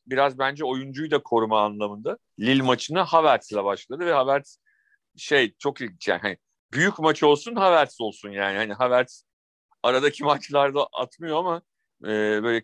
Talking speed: 140 wpm